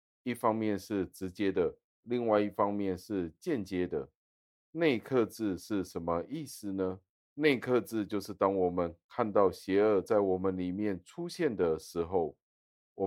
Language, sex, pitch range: Chinese, male, 85-105 Hz